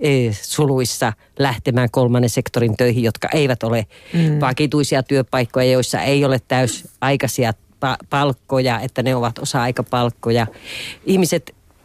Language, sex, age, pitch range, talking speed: Finnish, female, 40-59, 125-160 Hz, 100 wpm